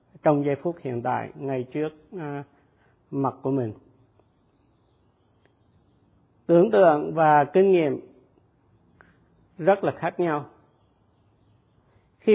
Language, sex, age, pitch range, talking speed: Vietnamese, male, 50-69, 125-165 Hz, 100 wpm